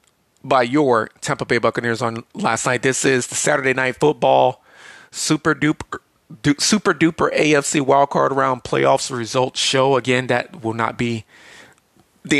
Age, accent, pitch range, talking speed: 30-49, American, 115-140 Hz, 145 wpm